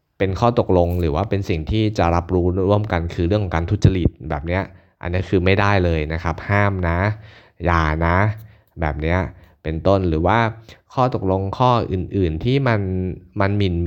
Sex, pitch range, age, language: male, 85-105 Hz, 20-39, Thai